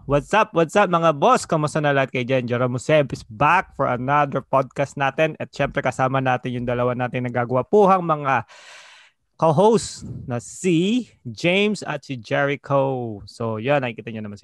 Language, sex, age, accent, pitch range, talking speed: English, male, 20-39, Filipino, 120-150 Hz, 175 wpm